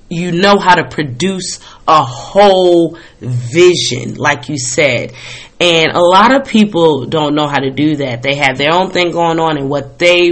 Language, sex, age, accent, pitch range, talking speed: English, female, 30-49, American, 150-190 Hz, 185 wpm